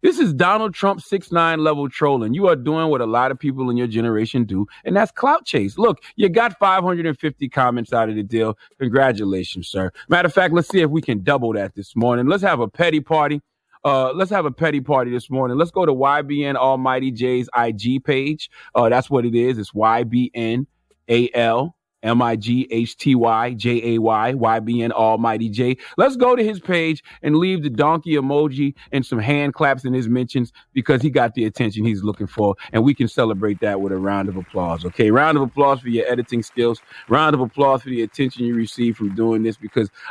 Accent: American